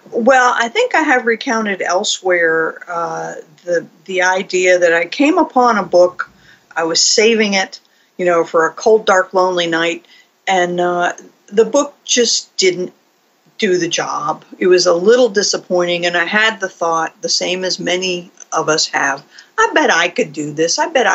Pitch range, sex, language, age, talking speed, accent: 180-245 Hz, female, English, 50-69, 180 wpm, American